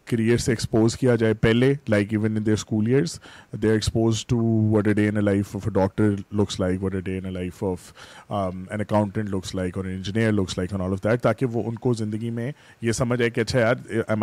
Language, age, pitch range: Urdu, 30-49, 105-120 Hz